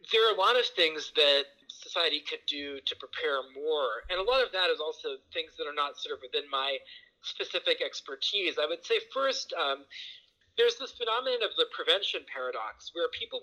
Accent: American